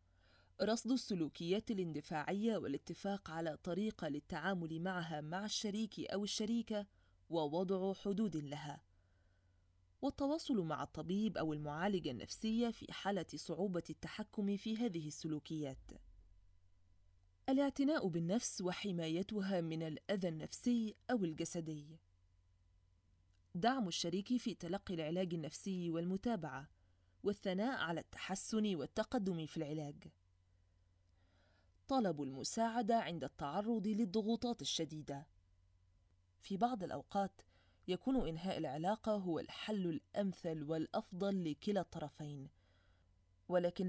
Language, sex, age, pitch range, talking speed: Arabic, female, 20-39, 140-205 Hz, 95 wpm